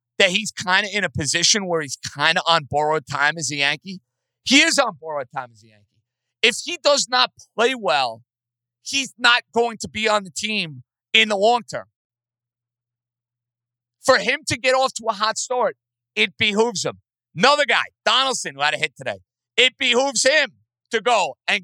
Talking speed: 190 wpm